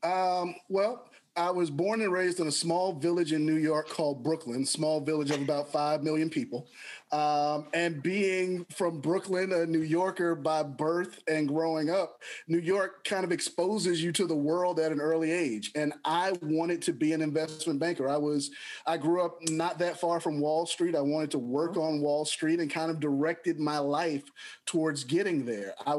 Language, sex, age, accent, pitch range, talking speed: English, male, 30-49, American, 150-170 Hz, 195 wpm